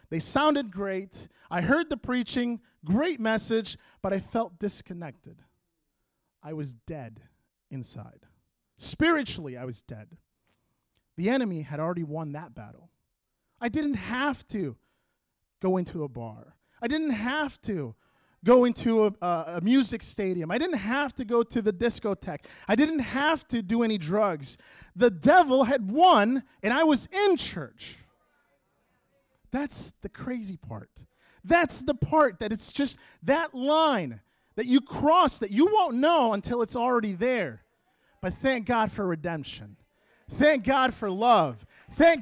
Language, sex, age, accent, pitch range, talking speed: English, male, 30-49, American, 190-290 Hz, 150 wpm